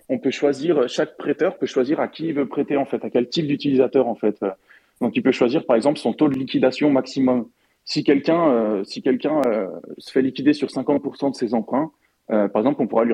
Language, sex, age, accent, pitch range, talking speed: English, male, 20-39, French, 110-140 Hz, 235 wpm